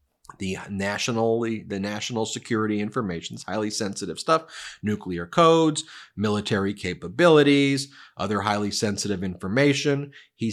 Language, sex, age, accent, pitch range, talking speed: English, male, 30-49, American, 100-120 Hz, 105 wpm